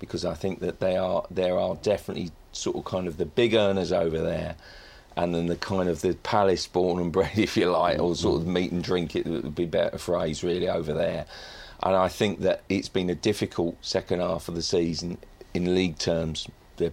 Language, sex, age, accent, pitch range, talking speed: English, male, 40-59, British, 85-100 Hz, 225 wpm